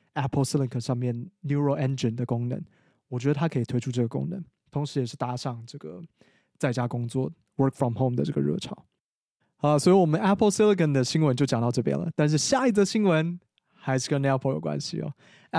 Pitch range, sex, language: 125-155 Hz, male, Chinese